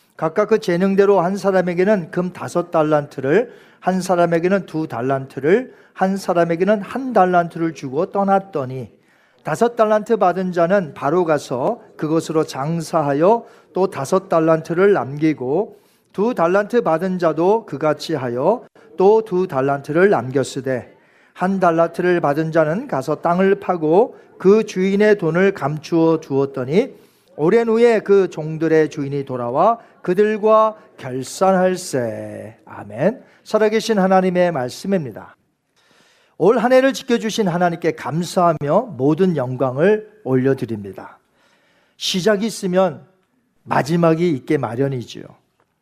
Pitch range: 150-200 Hz